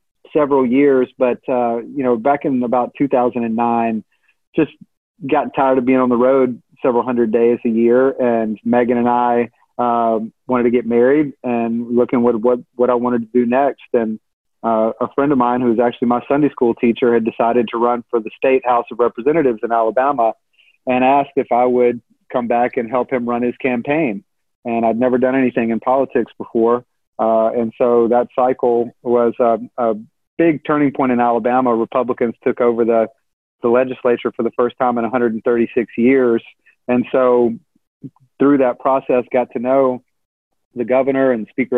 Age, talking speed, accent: 30-49, 180 wpm, American